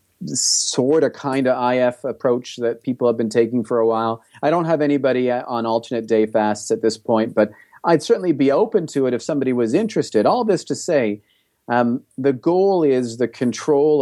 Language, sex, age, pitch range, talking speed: English, male, 40-59, 120-180 Hz, 195 wpm